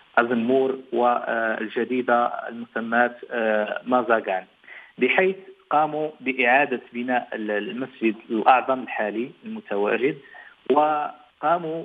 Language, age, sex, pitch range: Arabic, 40-59, male, 115-135 Hz